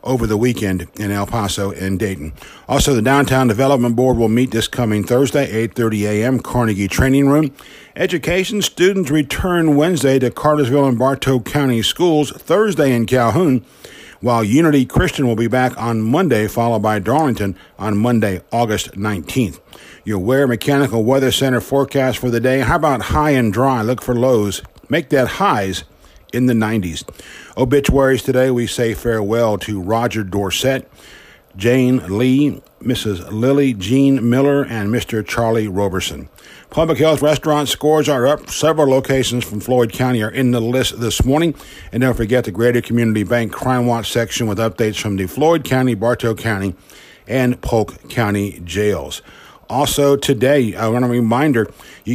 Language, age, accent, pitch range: English, 50-69, American, 110-135 Hz